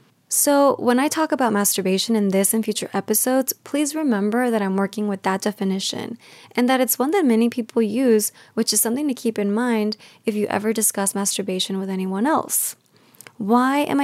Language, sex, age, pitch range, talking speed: English, female, 20-39, 200-240 Hz, 190 wpm